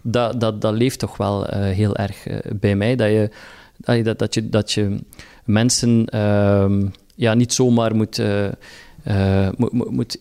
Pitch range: 105-120 Hz